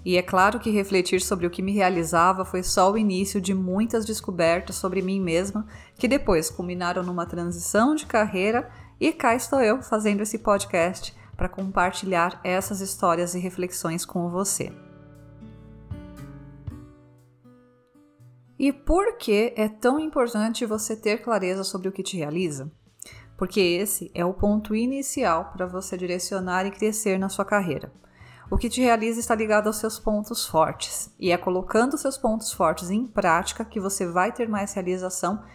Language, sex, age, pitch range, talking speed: Portuguese, female, 30-49, 175-225 Hz, 160 wpm